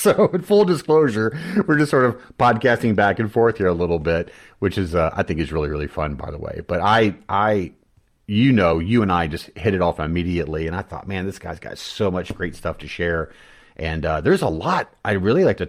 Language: English